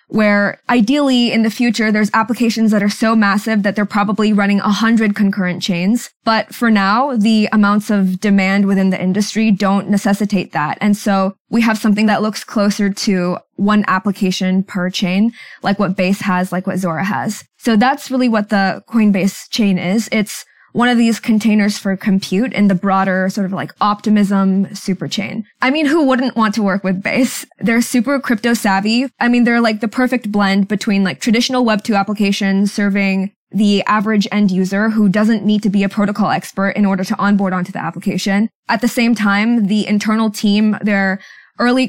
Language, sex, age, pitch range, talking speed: English, female, 20-39, 195-220 Hz, 190 wpm